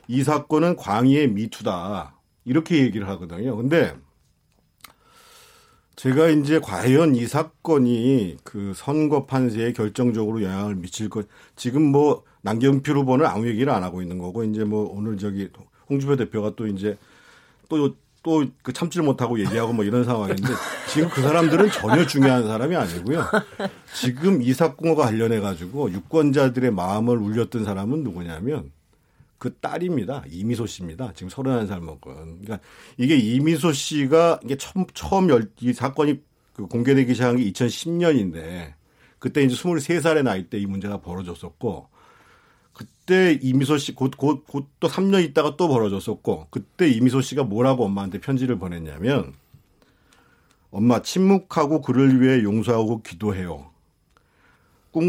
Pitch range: 105-150 Hz